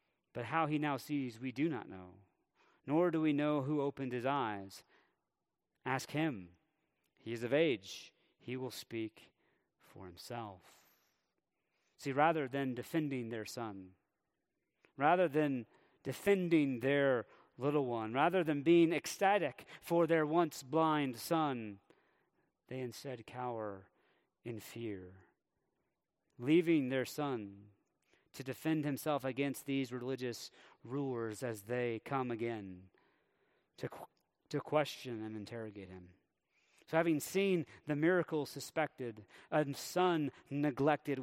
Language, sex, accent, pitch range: English, male, American, 115-150 Hz